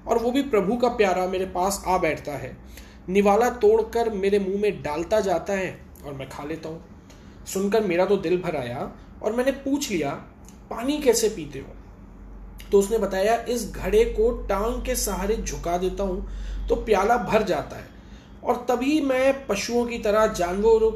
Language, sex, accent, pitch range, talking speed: Hindi, male, native, 175-230 Hz, 180 wpm